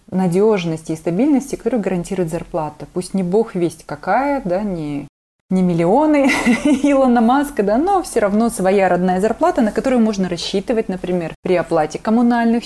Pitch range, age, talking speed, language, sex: 165-210 Hz, 20-39, 150 wpm, Russian, female